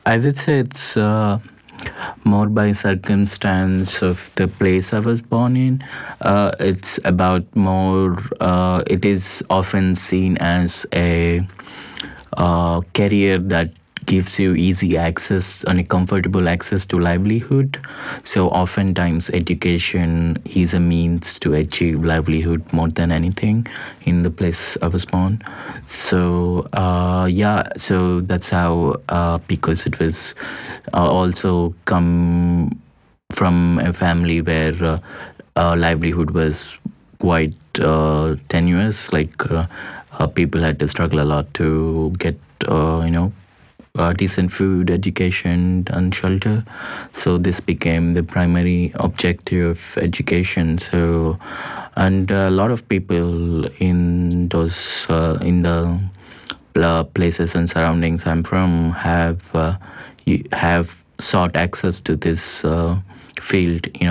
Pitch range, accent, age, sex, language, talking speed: 85-95 Hz, Indian, 20-39, male, English, 125 wpm